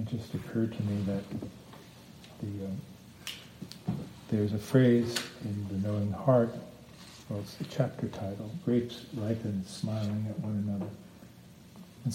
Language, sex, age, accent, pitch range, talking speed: English, male, 50-69, American, 105-125 Hz, 130 wpm